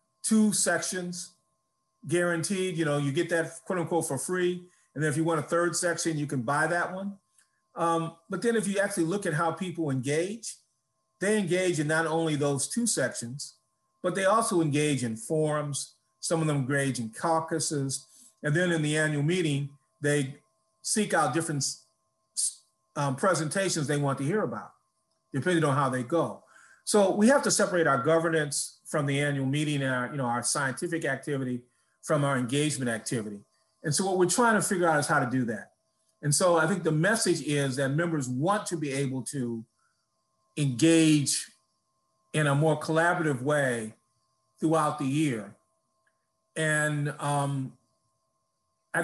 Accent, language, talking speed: American, English, 170 wpm